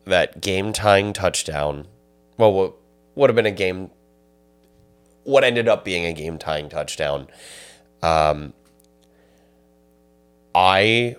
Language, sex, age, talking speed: English, male, 30-49, 115 wpm